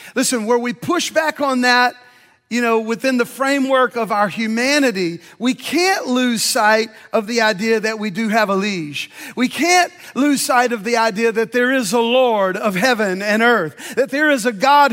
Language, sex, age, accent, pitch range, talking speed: English, male, 40-59, American, 220-265 Hz, 195 wpm